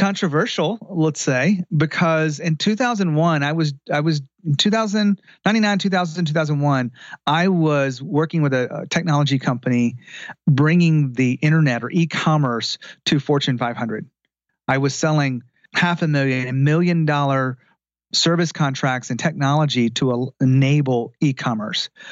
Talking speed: 130 wpm